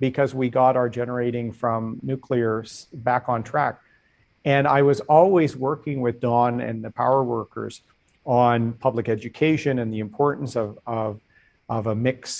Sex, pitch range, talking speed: male, 115-135 Hz, 155 wpm